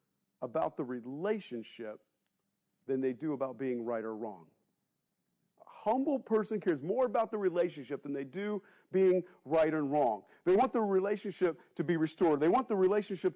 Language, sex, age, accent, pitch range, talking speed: English, male, 40-59, American, 150-225 Hz, 165 wpm